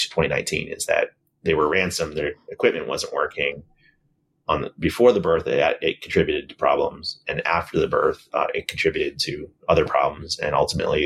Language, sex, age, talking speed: English, male, 30-49, 175 wpm